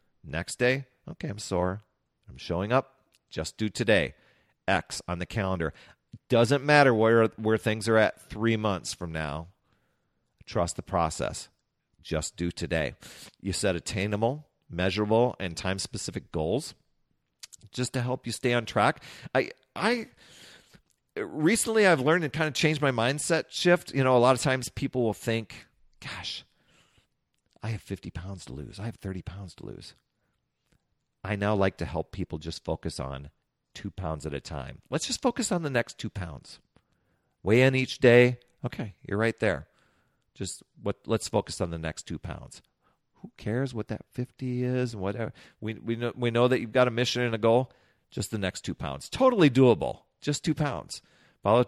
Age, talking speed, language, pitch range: 40-59, 175 wpm, English, 90-125 Hz